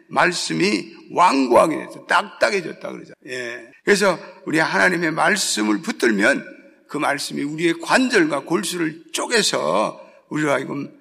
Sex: male